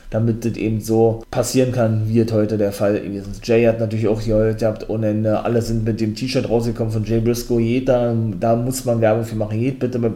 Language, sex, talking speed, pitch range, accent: German, male, 225 wpm, 110-125 Hz, German